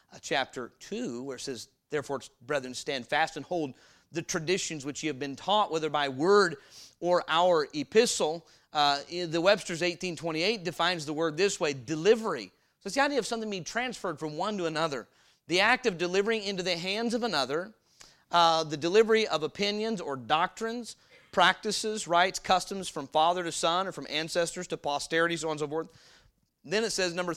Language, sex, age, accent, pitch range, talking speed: English, male, 30-49, American, 145-190 Hz, 185 wpm